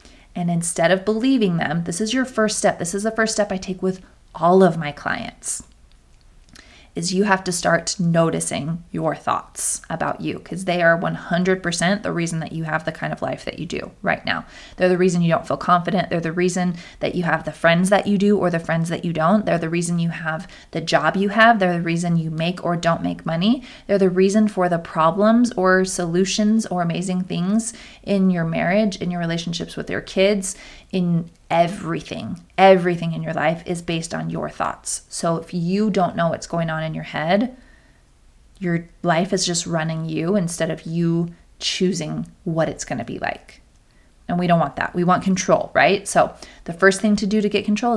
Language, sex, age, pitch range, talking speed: English, female, 20-39, 170-200 Hz, 210 wpm